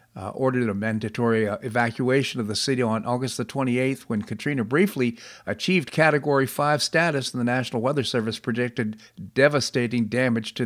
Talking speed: 165 wpm